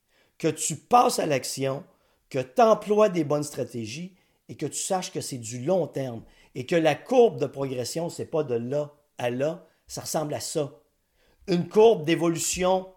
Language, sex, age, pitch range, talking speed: French, male, 50-69, 145-195 Hz, 185 wpm